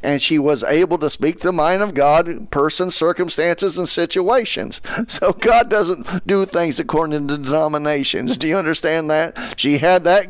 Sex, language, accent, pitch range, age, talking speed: male, English, American, 135-170 Hz, 50-69, 180 wpm